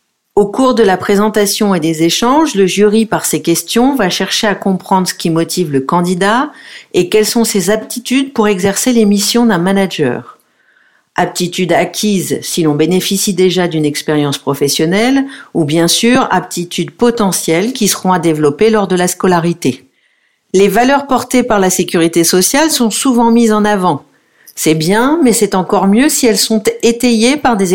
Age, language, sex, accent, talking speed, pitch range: 50-69, French, female, French, 170 wpm, 170-220 Hz